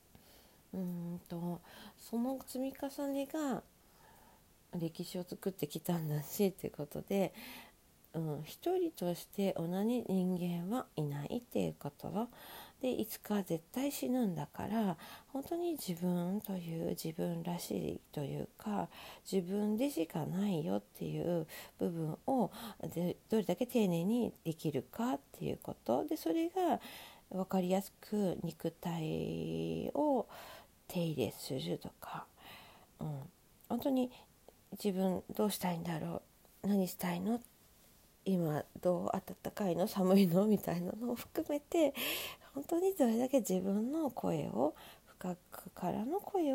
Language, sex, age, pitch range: Japanese, female, 40-59, 170-245 Hz